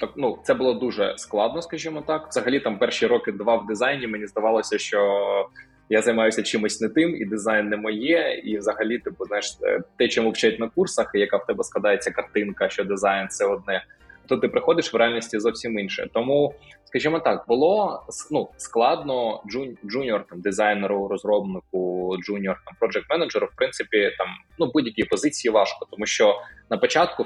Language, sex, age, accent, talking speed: Ukrainian, male, 20-39, native, 170 wpm